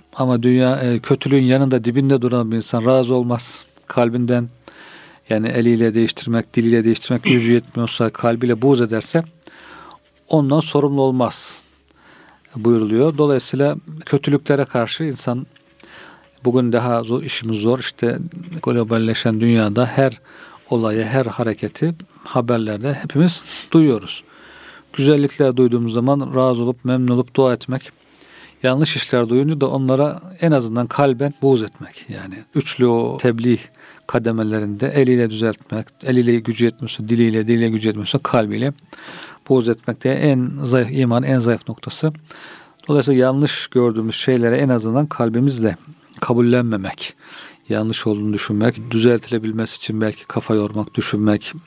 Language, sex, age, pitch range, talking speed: Turkish, male, 50-69, 115-140 Hz, 120 wpm